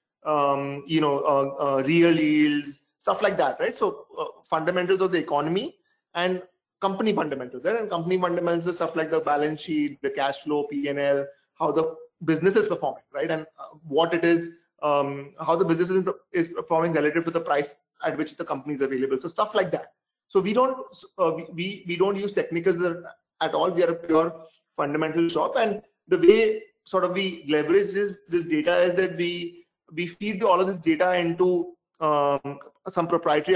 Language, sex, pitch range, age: English, male, 155-185 Hz, 30-49